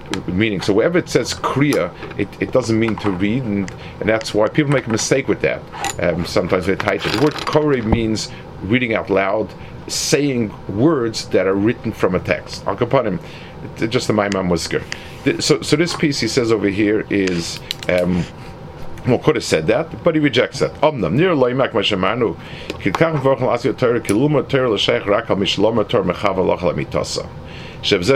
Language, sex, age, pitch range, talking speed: English, male, 50-69, 95-135 Hz, 145 wpm